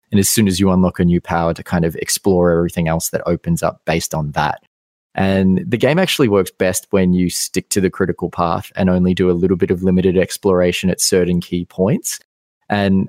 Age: 20-39